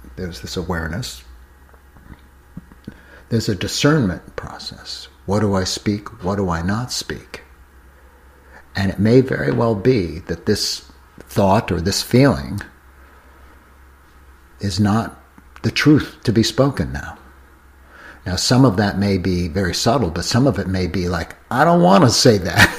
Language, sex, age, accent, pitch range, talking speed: English, male, 60-79, American, 70-105 Hz, 150 wpm